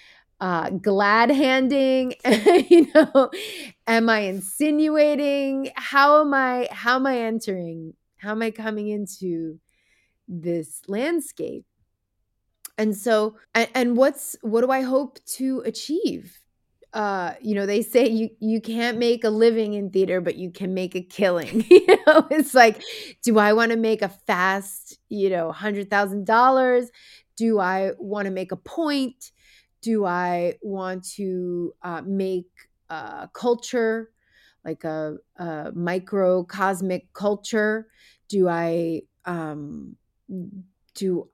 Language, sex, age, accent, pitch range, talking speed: English, female, 20-39, American, 180-240 Hz, 135 wpm